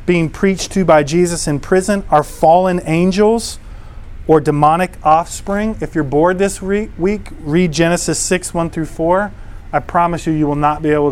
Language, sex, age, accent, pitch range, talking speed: English, male, 30-49, American, 135-170 Hz, 175 wpm